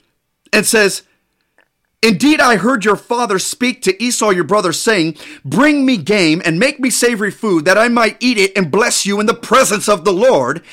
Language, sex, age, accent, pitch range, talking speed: English, male, 40-59, American, 195-265 Hz, 195 wpm